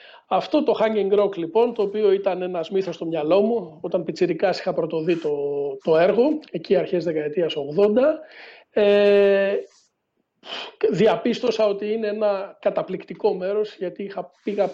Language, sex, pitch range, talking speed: Greek, male, 170-215 Hz, 140 wpm